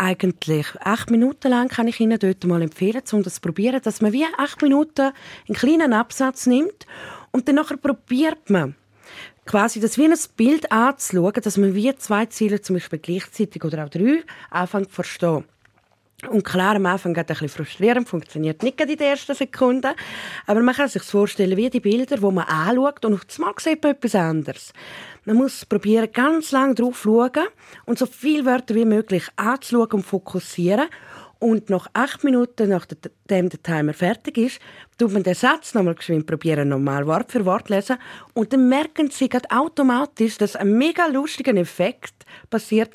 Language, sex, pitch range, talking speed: German, female, 185-260 Hz, 180 wpm